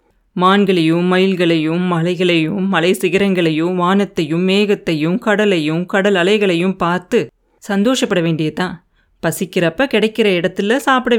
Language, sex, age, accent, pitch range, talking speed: Tamil, female, 30-49, native, 180-230 Hz, 90 wpm